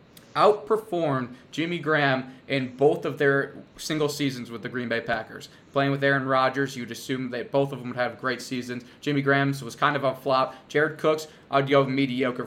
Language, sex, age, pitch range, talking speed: English, male, 20-39, 125-140 Hz, 195 wpm